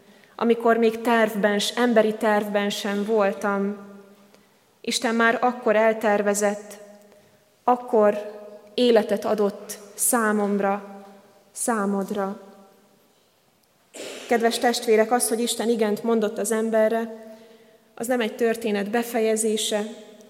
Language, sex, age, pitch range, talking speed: Hungarian, female, 20-39, 205-225 Hz, 90 wpm